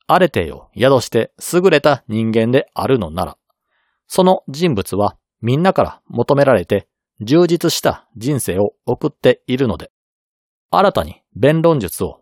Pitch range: 110-165 Hz